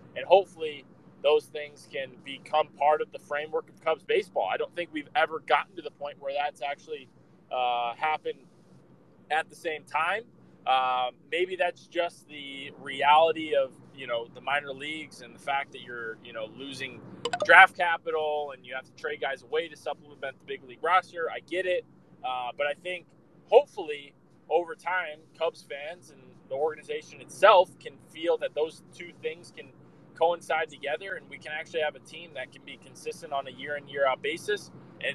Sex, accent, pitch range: male, American, 145-180 Hz